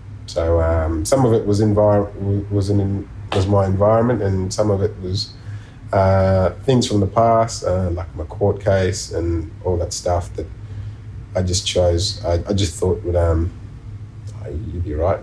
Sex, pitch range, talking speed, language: male, 90-105 Hz, 175 wpm, English